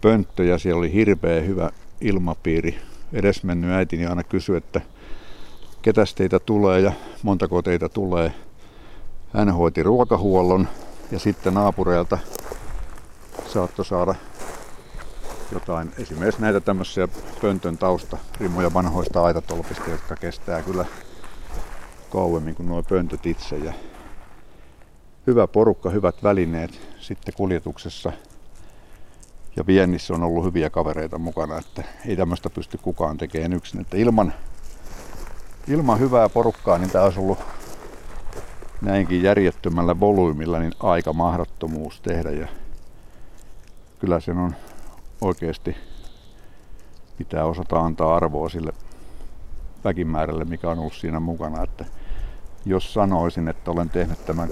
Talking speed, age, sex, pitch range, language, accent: 115 wpm, 60-79, male, 80-95 Hz, Finnish, native